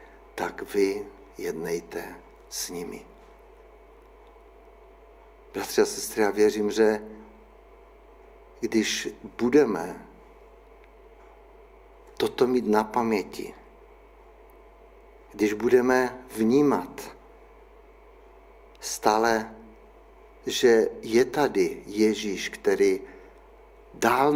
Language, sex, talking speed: Czech, male, 65 wpm